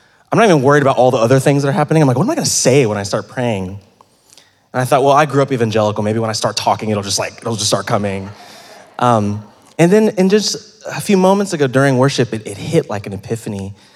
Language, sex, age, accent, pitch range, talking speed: English, male, 20-39, American, 105-135 Hz, 260 wpm